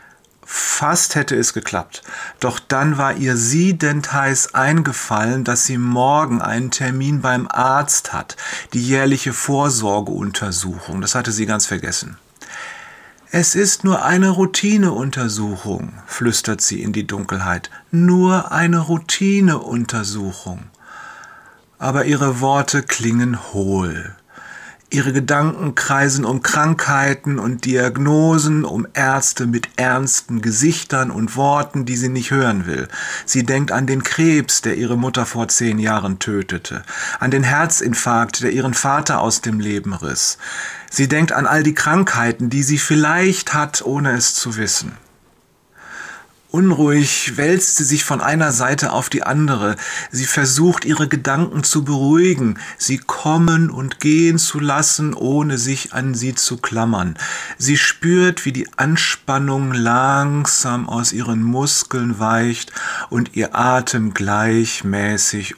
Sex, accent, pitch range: male, German, 120-150 Hz